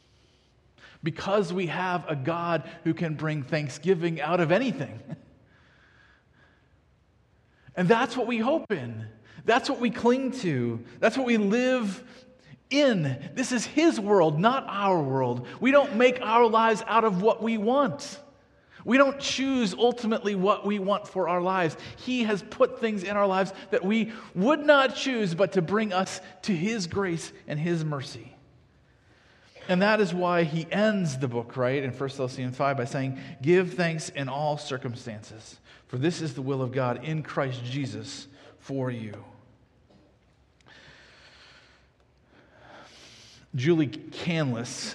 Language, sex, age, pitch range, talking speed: English, male, 40-59, 130-205 Hz, 150 wpm